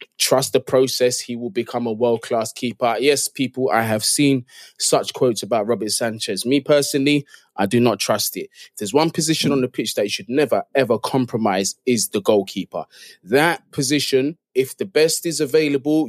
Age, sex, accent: 20-39, male, British